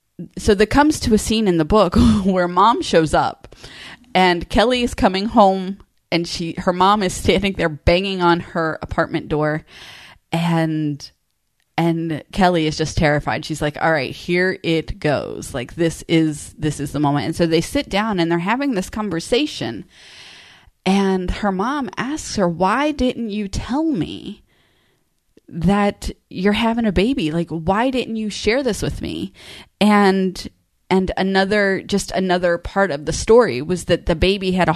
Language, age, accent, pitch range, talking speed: English, 20-39, American, 165-205 Hz, 170 wpm